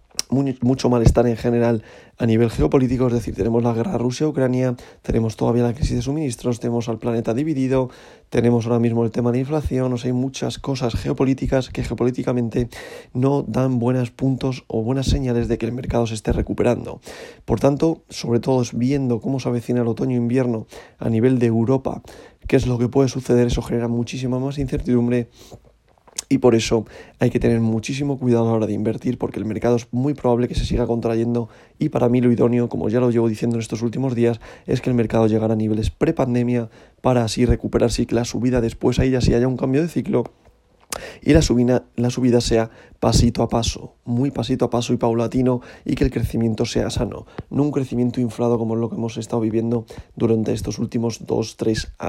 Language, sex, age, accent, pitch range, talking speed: Spanish, male, 20-39, Spanish, 115-130 Hz, 195 wpm